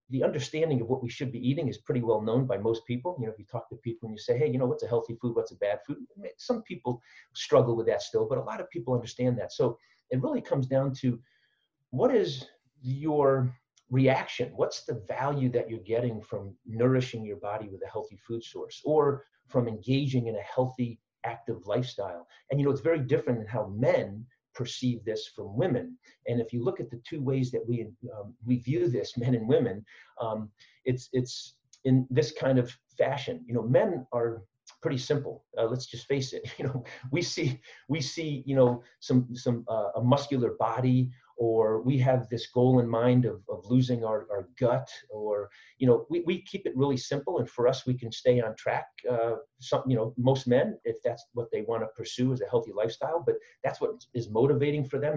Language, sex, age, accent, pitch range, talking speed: English, male, 40-59, American, 120-140 Hz, 215 wpm